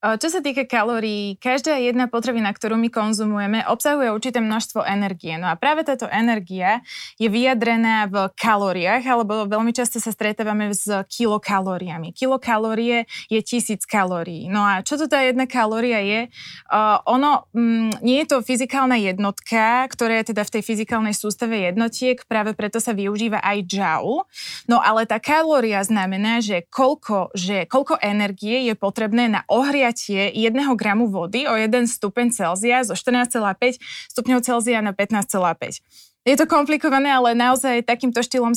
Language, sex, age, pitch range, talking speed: Slovak, female, 20-39, 205-250 Hz, 155 wpm